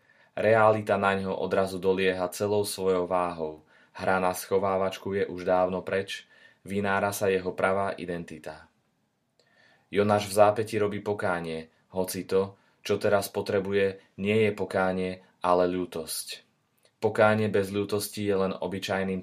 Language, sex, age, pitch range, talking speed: Slovak, male, 20-39, 90-100 Hz, 130 wpm